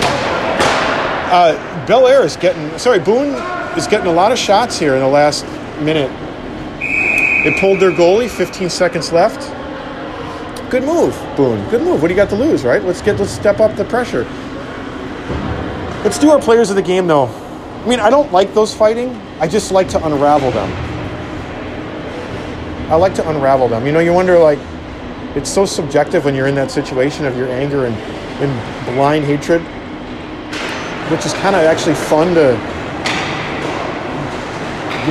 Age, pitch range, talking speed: 40-59, 150-215 Hz, 165 wpm